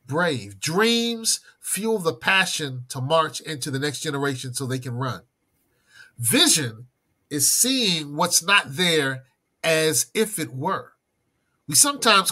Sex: male